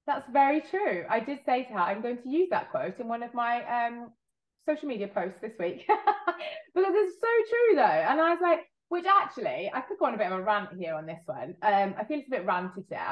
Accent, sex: British, female